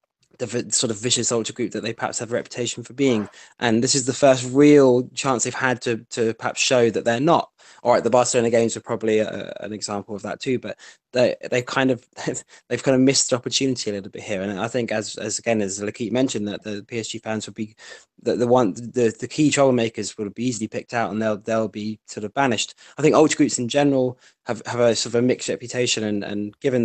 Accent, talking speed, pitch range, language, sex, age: British, 245 wpm, 105-125 Hz, English, male, 20-39